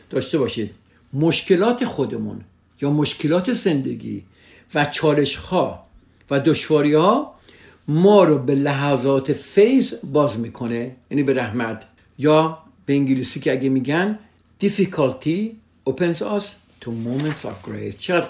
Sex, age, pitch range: male, 60-79, 125-175 Hz